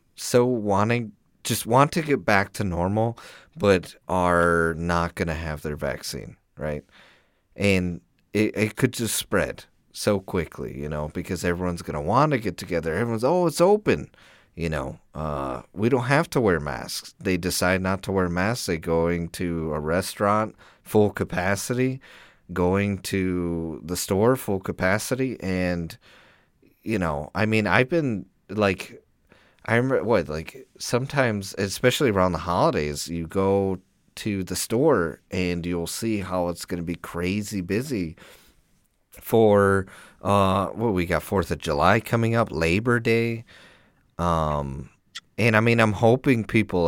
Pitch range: 85-110 Hz